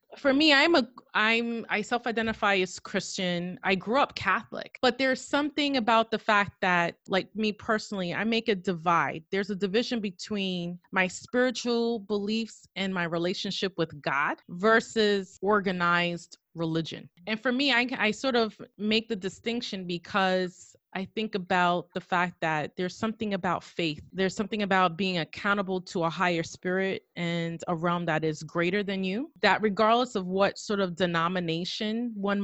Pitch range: 180-225 Hz